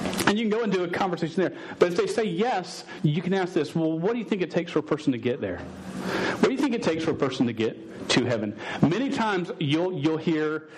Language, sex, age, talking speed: English, male, 40-59, 275 wpm